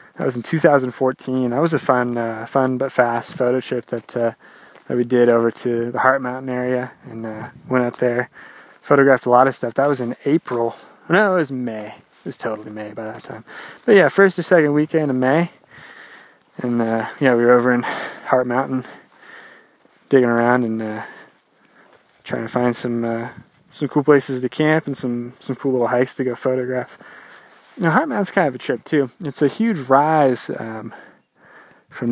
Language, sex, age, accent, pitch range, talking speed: English, male, 20-39, American, 120-145 Hz, 195 wpm